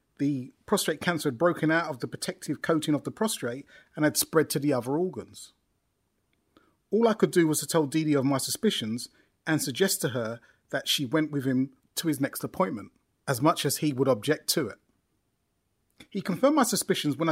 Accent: British